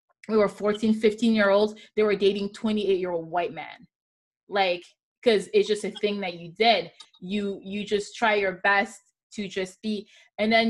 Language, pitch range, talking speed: English, 185-220 Hz, 170 wpm